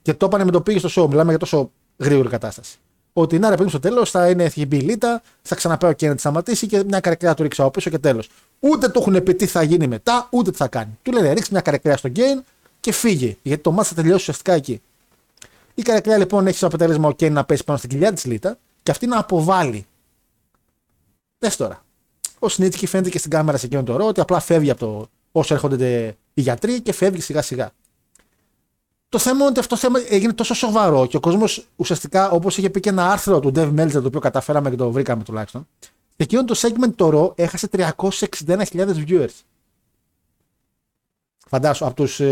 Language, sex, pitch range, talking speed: Greek, male, 145-200 Hz, 210 wpm